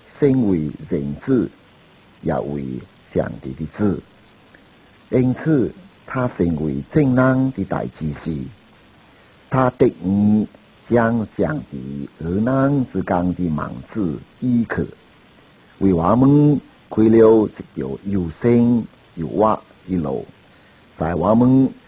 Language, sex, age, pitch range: Chinese, male, 60-79, 85-120 Hz